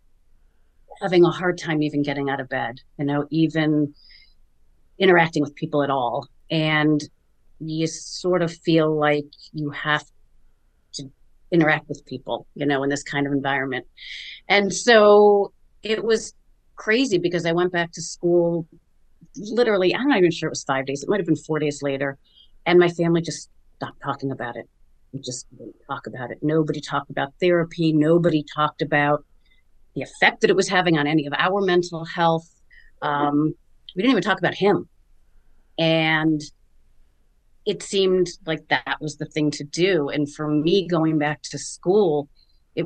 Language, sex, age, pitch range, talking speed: English, female, 40-59, 145-170 Hz, 170 wpm